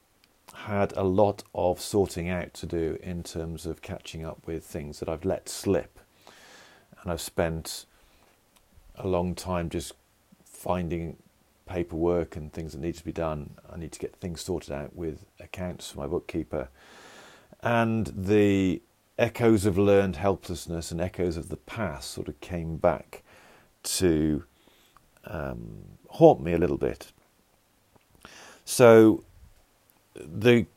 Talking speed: 140 wpm